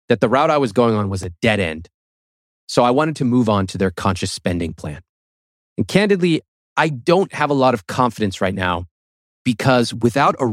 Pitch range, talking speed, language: 100-145 Hz, 205 wpm, English